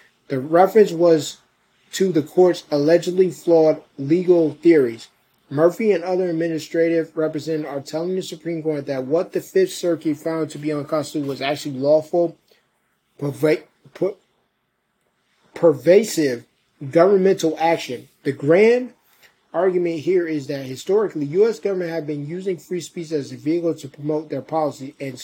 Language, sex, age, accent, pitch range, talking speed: English, male, 20-39, American, 150-185 Hz, 145 wpm